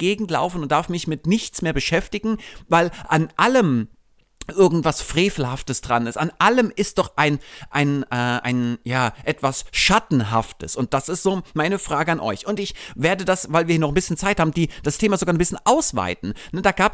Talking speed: 200 wpm